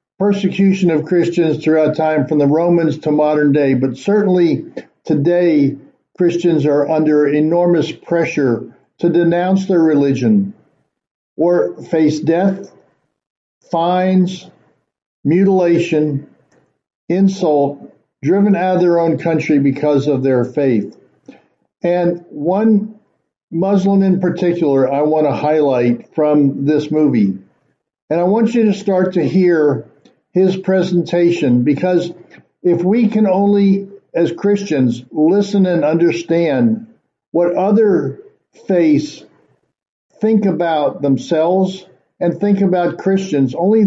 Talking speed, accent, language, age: 110 wpm, American, English, 60-79